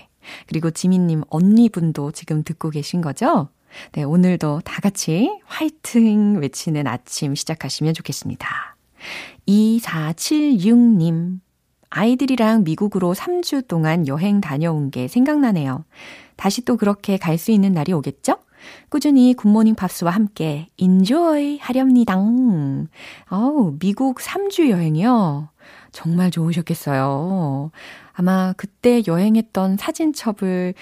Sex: female